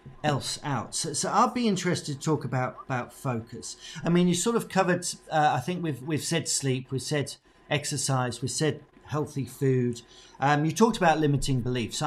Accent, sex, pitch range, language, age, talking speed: British, male, 125-165 Hz, English, 40-59, 190 wpm